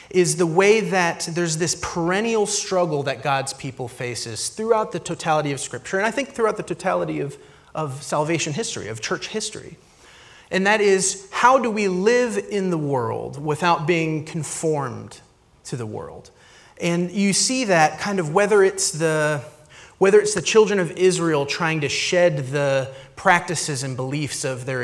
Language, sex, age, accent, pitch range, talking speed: English, male, 30-49, American, 135-185 Hz, 170 wpm